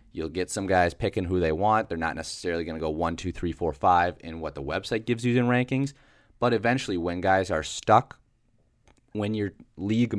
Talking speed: 210 wpm